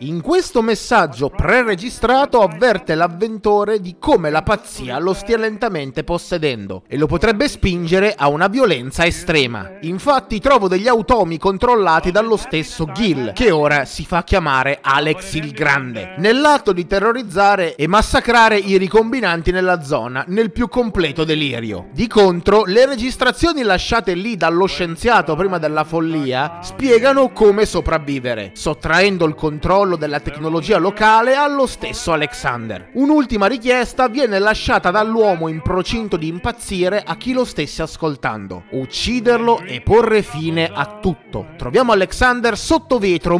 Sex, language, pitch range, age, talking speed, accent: male, Italian, 160-230 Hz, 30-49, 135 wpm, native